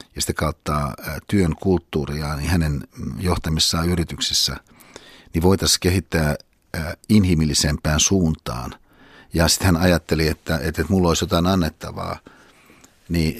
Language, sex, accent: Finnish, male, native